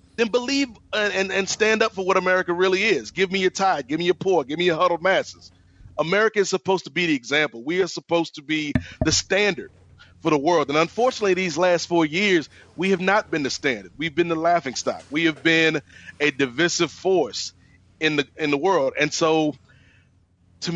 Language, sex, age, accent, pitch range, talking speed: English, male, 30-49, American, 140-185 Hz, 210 wpm